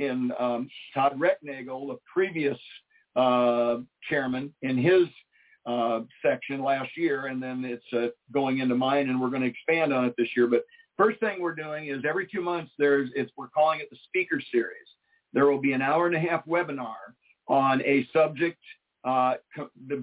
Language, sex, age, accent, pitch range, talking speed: English, male, 50-69, American, 130-175 Hz, 185 wpm